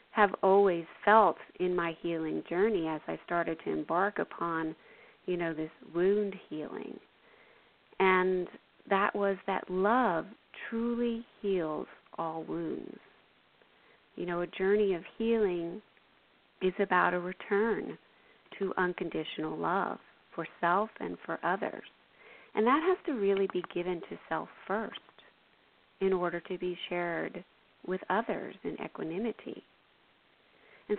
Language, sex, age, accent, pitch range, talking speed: English, female, 40-59, American, 175-210 Hz, 125 wpm